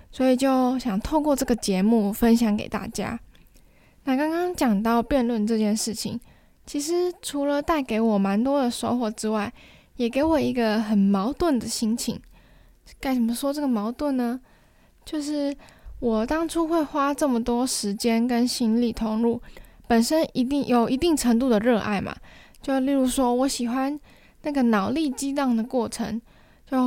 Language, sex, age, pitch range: Chinese, female, 10-29, 225-280 Hz